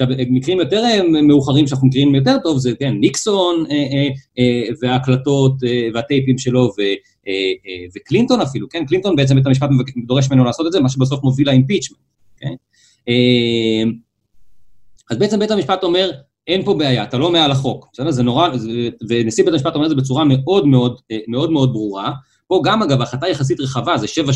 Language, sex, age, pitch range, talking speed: Hebrew, male, 30-49, 120-160 Hz, 180 wpm